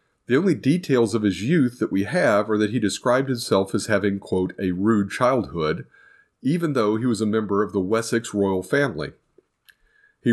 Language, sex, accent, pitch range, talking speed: English, male, American, 100-130 Hz, 185 wpm